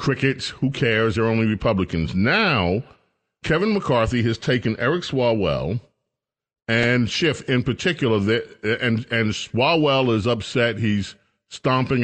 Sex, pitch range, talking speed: male, 115-160 Hz, 125 wpm